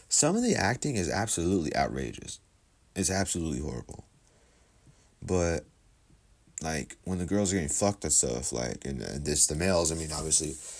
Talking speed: 160 wpm